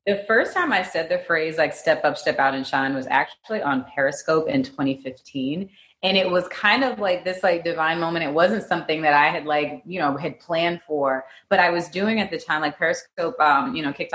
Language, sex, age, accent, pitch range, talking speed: English, female, 30-49, American, 145-180 Hz, 235 wpm